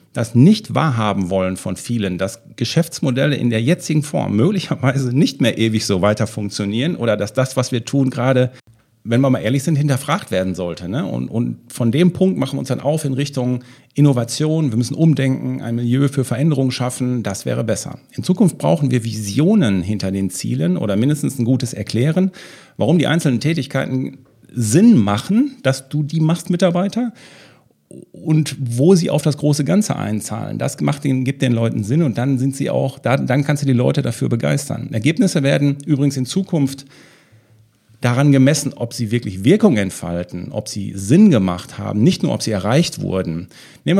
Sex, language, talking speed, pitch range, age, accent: male, German, 180 wpm, 115-155 Hz, 50-69, German